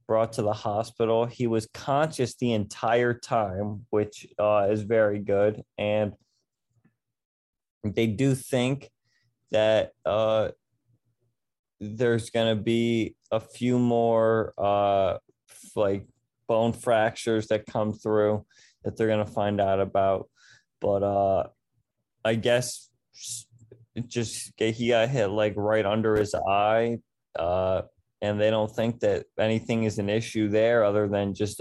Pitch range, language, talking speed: 105-120 Hz, English, 125 wpm